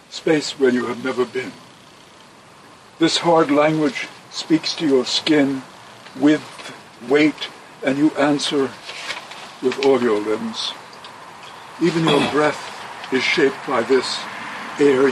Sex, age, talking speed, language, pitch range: male, 60-79, 120 wpm, English, 130-165 Hz